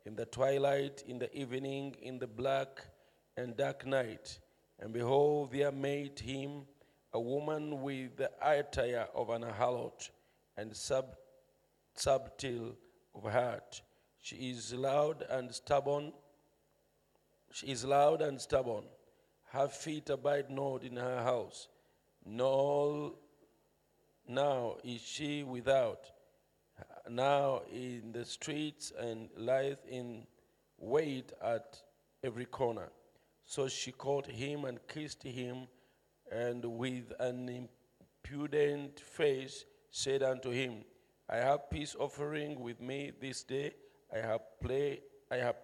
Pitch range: 125-140 Hz